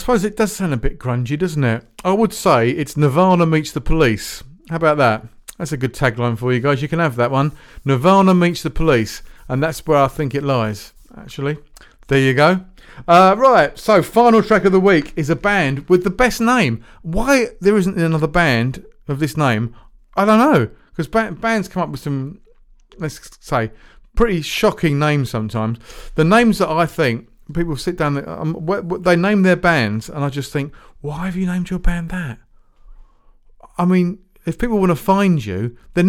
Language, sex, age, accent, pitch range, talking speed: English, male, 40-59, British, 135-190 Hz, 195 wpm